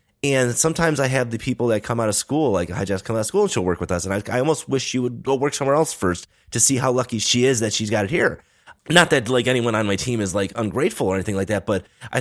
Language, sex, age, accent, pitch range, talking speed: English, male, 30-49, American, 95-125 Hz, 305 wpm